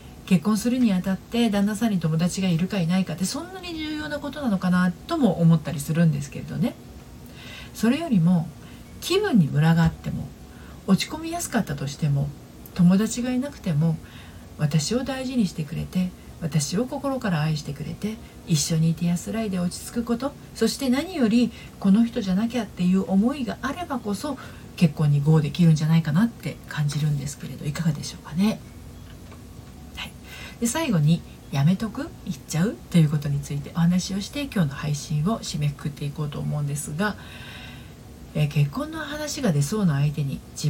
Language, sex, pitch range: Japanese, female, 155-230 Hz